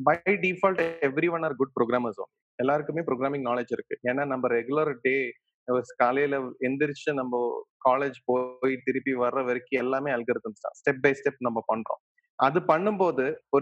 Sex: male